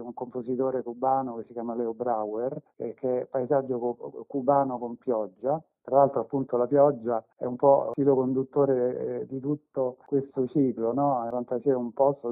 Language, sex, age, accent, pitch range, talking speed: Italian, male, 50-69, native, 120-145 Hz, 175 wpm